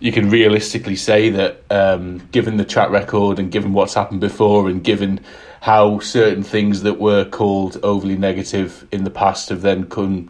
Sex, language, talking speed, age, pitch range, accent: male, English, 180 wpm, 30-49, 100-115 Hz, British